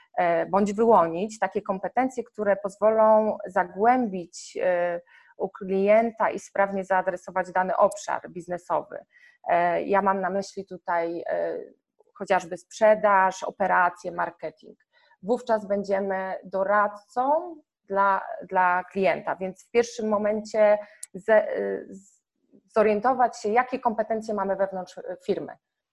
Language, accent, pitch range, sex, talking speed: Polish, native, 190-235 Hz, female, 95 wpm